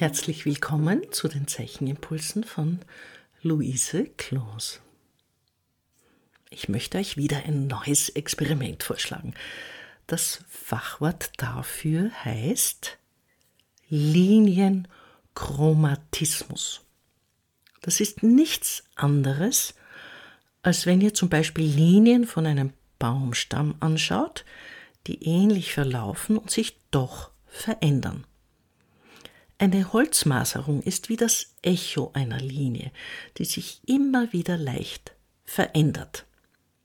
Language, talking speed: German, 90 wpm